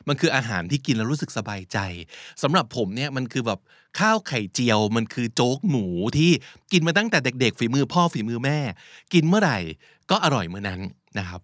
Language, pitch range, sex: Thai, 105-150 Hz, male